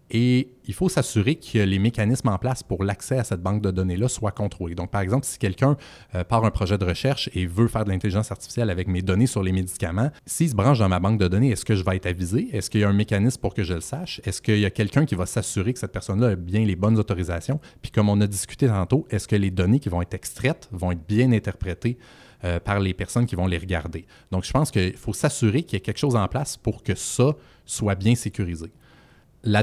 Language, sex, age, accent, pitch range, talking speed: French, male, 30-49, Canadian, 95-125 Hz, 255 wpm